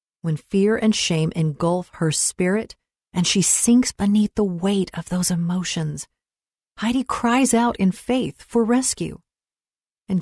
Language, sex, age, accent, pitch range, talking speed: English, female, 40-59, American, 175-220 Hz, 140 wpm